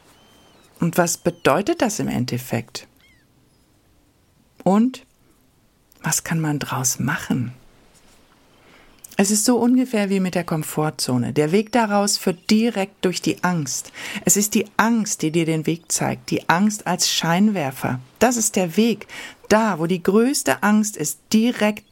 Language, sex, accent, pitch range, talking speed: German, female, German, 150-215 Hz, 140 wpm